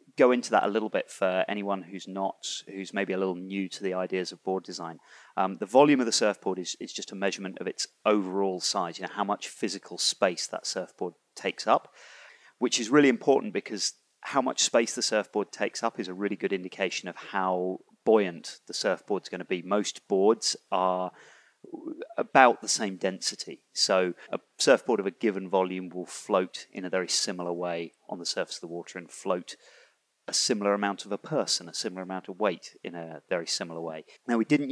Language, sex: English, male